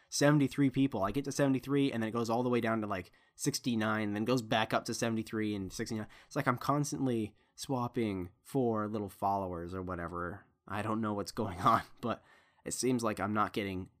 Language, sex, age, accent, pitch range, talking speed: English, male, 20-39, American, 100-130 Hz, 210 wpm